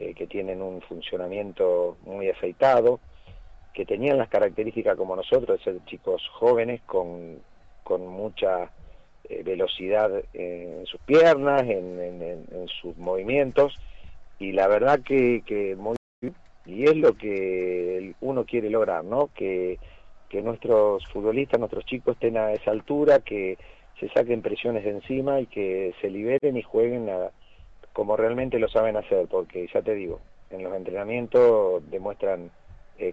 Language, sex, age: Spanish, male, 50-69